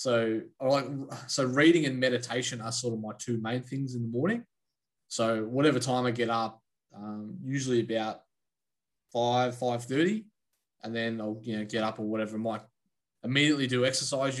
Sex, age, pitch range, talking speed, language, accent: male, 20-39, 110-125 Hz, 175 wpm, English, Australian